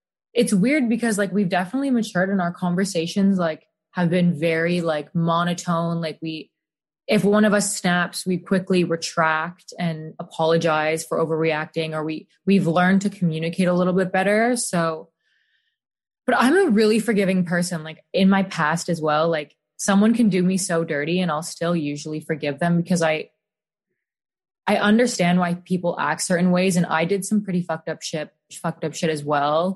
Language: English